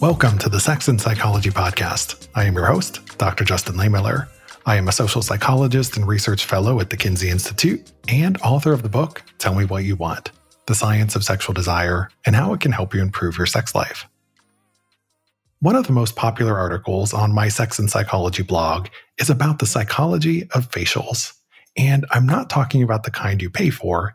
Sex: male